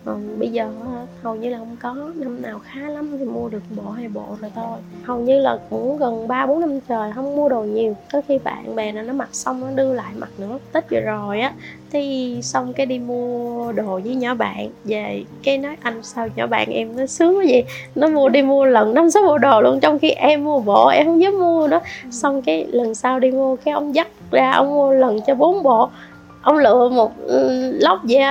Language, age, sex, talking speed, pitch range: Vietnamese, 20-39, female, 235 wpm, 225-275 Hz